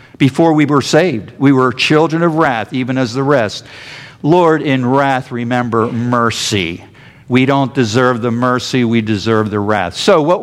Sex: male